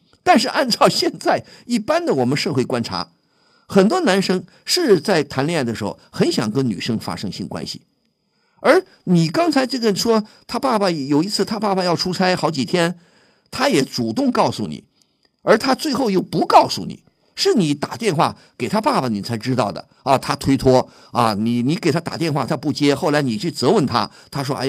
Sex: male